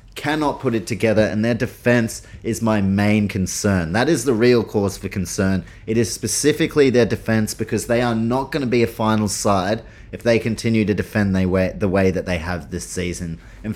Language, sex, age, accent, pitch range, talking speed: English, male, 30-49, Australian, 105-120 Hz, 200 wpm